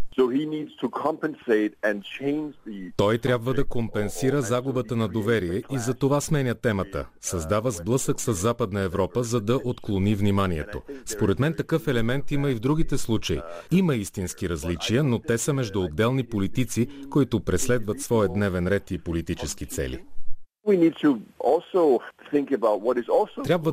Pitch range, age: 100-130 Hz, 40-59